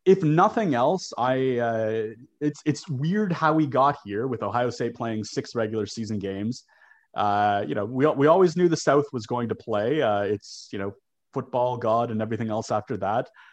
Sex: male